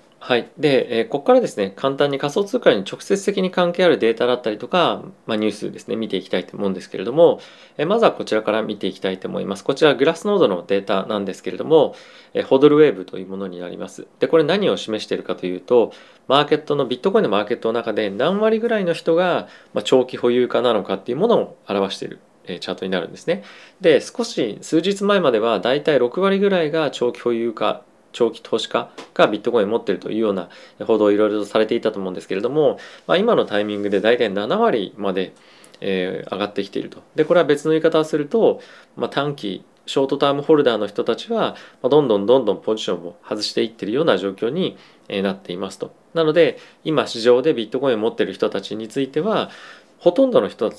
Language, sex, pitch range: Japanese, male, 105-160 Hz